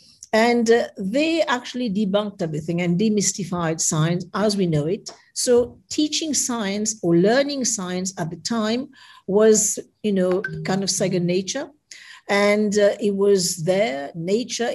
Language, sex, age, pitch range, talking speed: English, female, 50-69, 175-230 Hz, 140 wpm